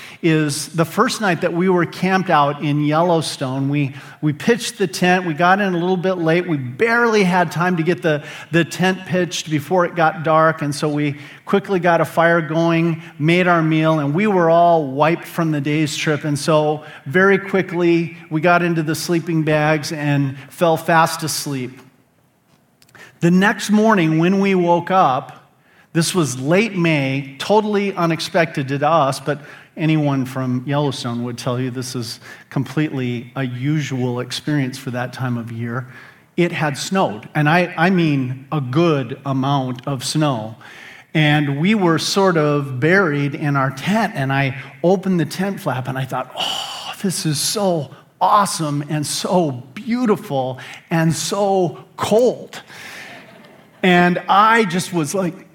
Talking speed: 160 wpm